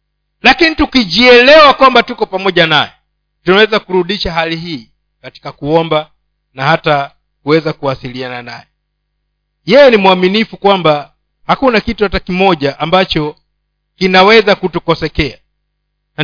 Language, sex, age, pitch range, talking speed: Swahili, male, 50-69, 160-210 Hz, 105 wpm